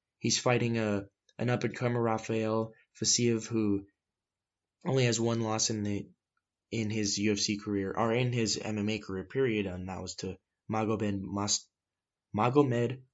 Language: English